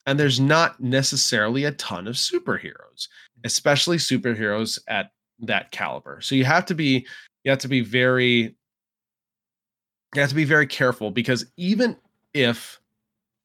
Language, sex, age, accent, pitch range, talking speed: English, male, 20-39, American, 115-140 Hz, 145 wpm